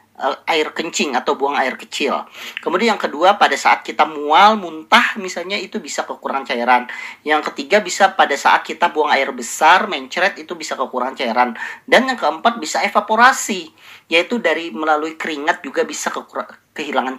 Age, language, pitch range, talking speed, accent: 40-59, Indonesian, 150-210 Hz, 155 wpm, native